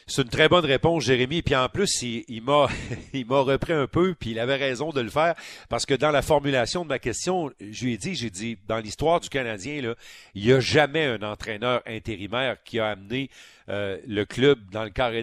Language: French